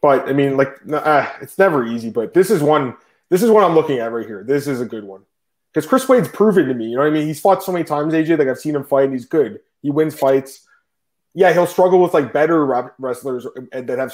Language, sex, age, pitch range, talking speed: English, male, 20-39, 125-155 Hz, 270 wpm